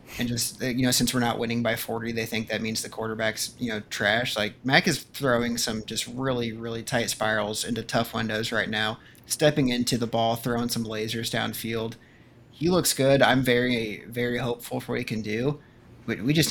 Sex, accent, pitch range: male, American, 110-125 Hz